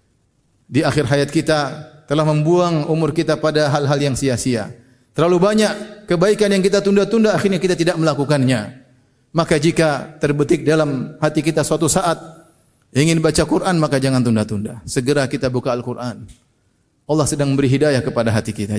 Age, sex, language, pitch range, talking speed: 30-49, male, Indonesian, 150-210 Hz, 150 wpm